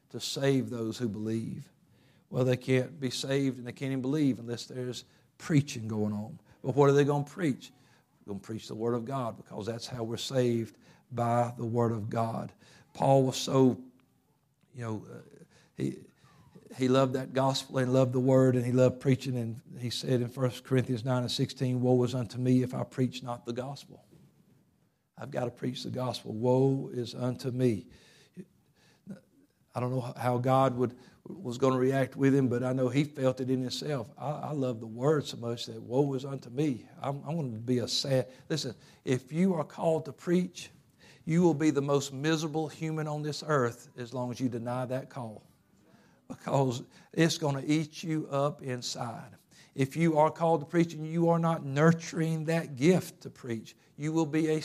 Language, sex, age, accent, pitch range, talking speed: English, male, 50-69, American, 125-150 Hz, 200 wpm